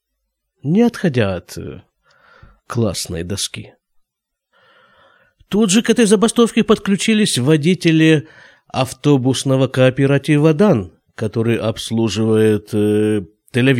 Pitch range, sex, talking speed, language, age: 105-165 Hz, male, 85 wpm, Russian, 50-69